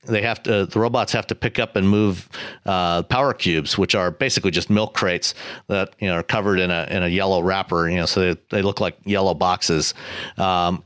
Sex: male